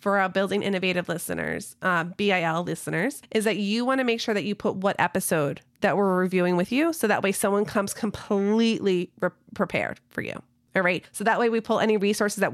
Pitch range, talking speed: 180-220 Hz, 210 wpm